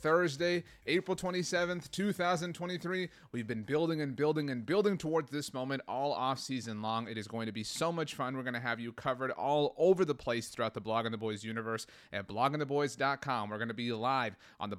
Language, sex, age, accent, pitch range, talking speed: English, male, 30-49, American, 115-145 Hz, 210 wpm